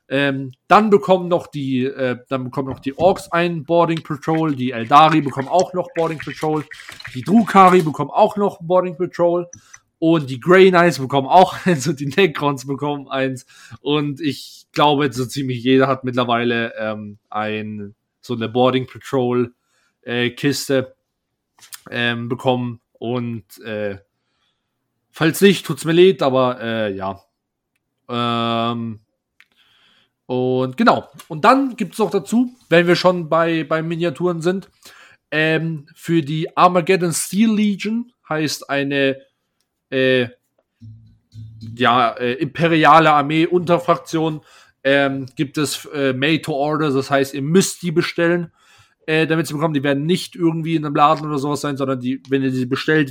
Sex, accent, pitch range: male, German, 130-170 Hz